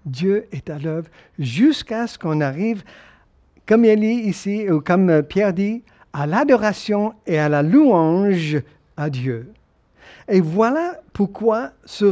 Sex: male